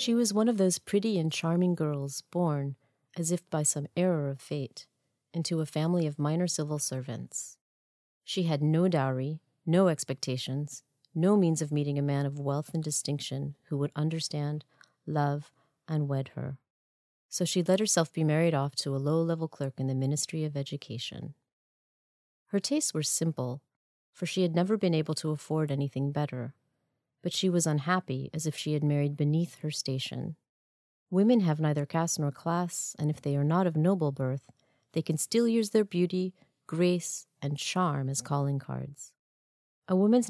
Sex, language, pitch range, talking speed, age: female, English, 140-175 Hz, 175 wpm, 40-59